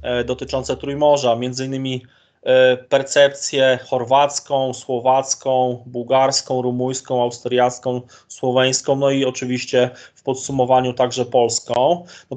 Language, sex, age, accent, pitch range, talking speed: Polish, male, 20-39, native, 125-140 Hz, 85 wpm